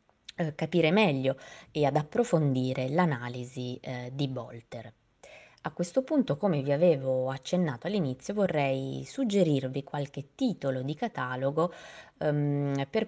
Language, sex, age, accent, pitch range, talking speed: Italian, female, 20-39, native, 135-170 Hz, 105 wpm